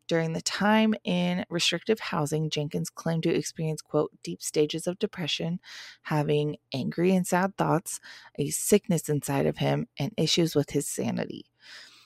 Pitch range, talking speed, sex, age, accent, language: 155-185 Hz, 150 wpm, female, 20-39, American, English